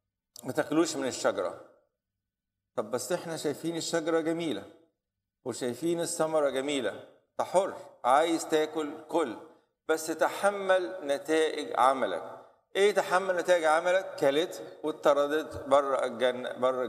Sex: male